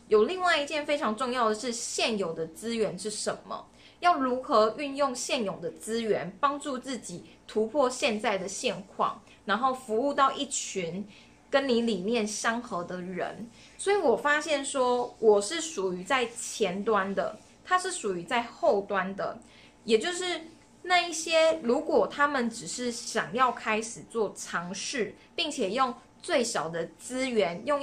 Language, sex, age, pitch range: Chinese, female, 20-39, 210-280 Hz